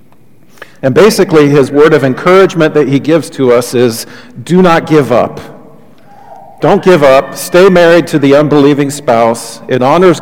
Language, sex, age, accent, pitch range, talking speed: English, male, 40-59, American, 125-150 Hz, 160 wpm